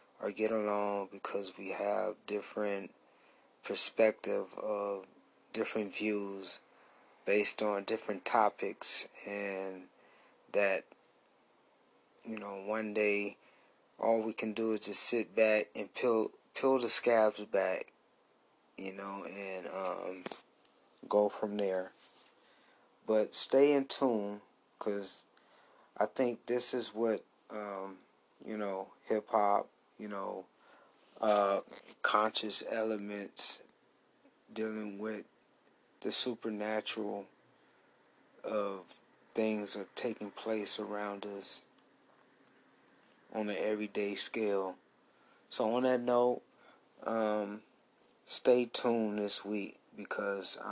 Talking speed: 100 wpm